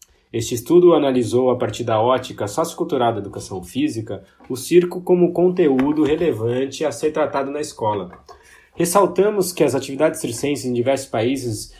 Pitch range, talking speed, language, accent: 110-155 Hz, 150 wpm, Portuguese, Brazilian